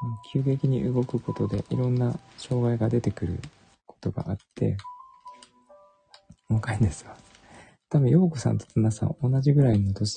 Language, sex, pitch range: Japanese, male, 100-140 Hz